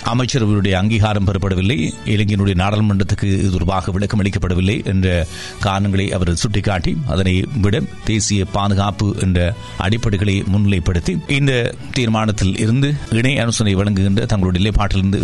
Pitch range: 100-115 Hz